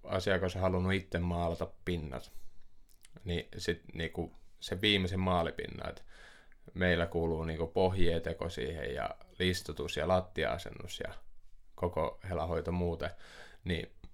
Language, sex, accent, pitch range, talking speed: Finnish, male, native, 85-95 Hz, 115 wpm